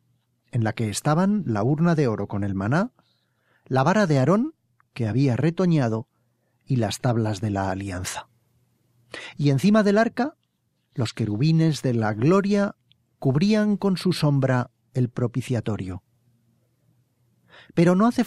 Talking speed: 140 wpm